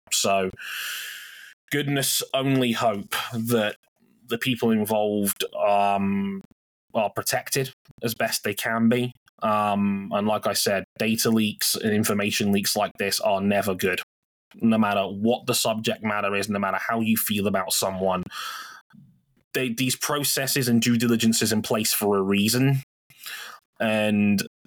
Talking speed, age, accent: 140 wpm, 20-39, British